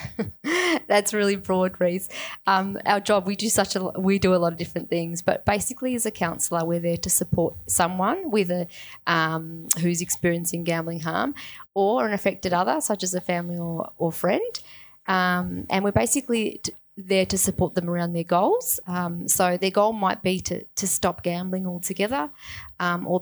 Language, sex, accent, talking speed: English, female, Australian, 185 wpm